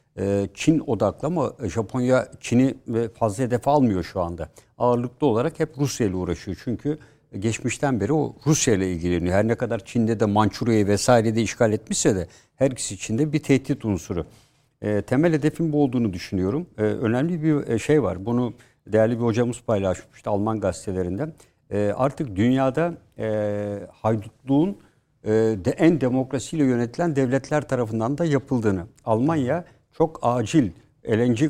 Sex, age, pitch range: male, 60-79, 110-140 Hz